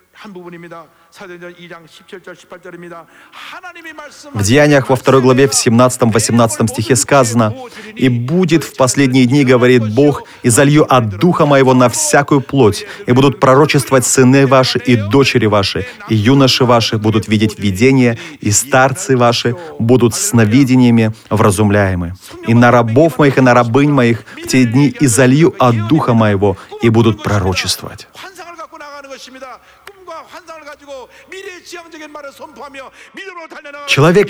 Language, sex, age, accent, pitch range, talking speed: Russian, male, 30-49, native, 125-180 Hz, 110 wpm